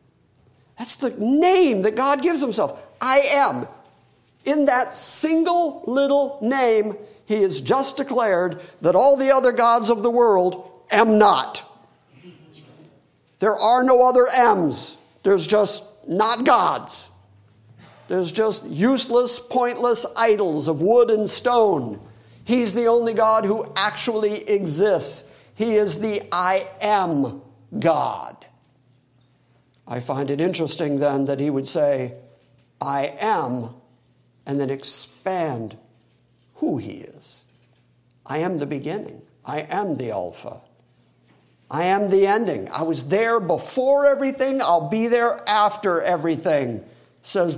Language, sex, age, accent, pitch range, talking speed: English, male, 50-69, American, 145-240 Hz, 125 wpm